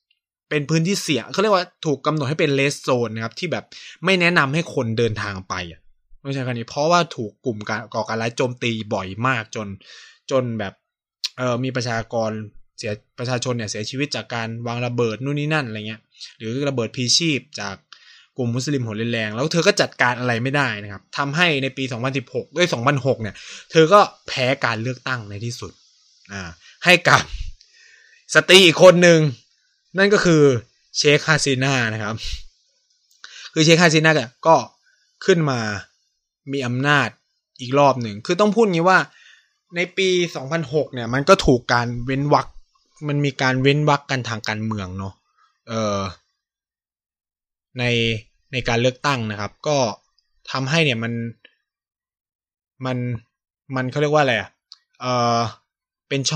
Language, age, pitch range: Thai, 20-39, 115-150 Hz